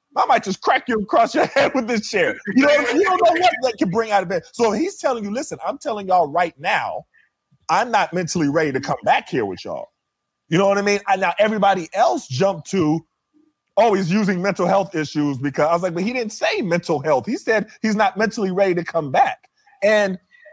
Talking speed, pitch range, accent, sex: 240 wpm, 135-205 Hz, American, male